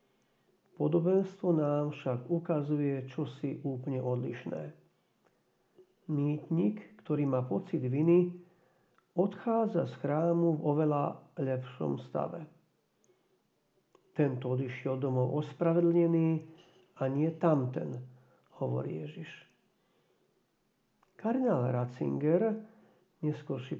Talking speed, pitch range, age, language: 80 wpm, 140-180 Hz, 50-69, Slovak